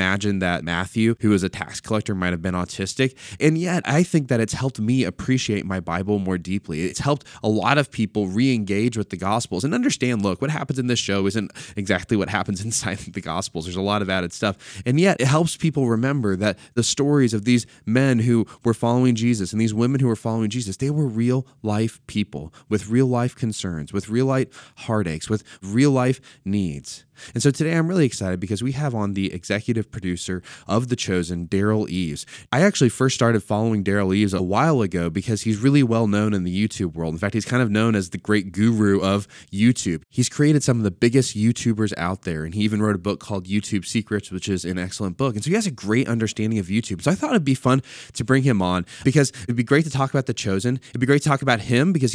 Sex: male